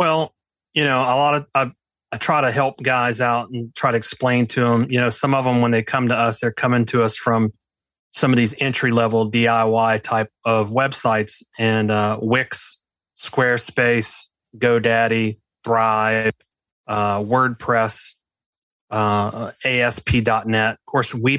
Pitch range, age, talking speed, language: 105-120 Hz, 30-49, 155 wpm, English